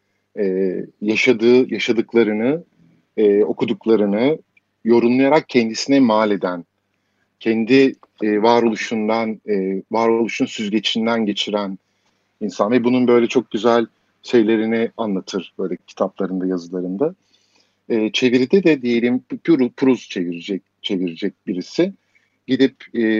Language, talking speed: Turkish, 100 wpm